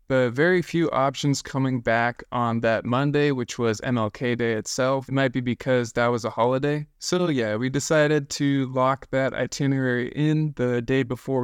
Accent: American